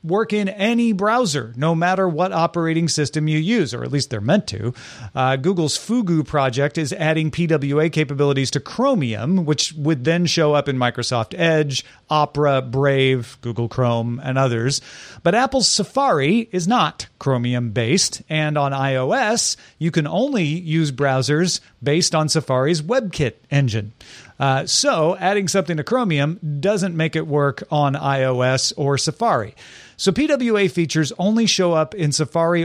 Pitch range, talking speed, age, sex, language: 130-175 Hz, 155 wpm, 40-59, male, English